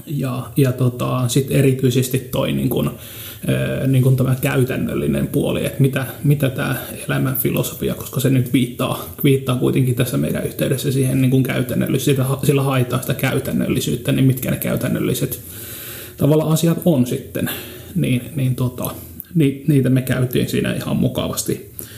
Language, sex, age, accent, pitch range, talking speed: Finnish, male, 30-49, native, 120-135 Hz, 140 wpm